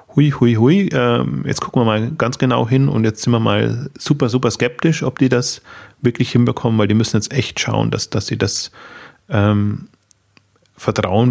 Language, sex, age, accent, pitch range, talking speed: German, male, 30-49, German, 105-125 Hz, 190 wpm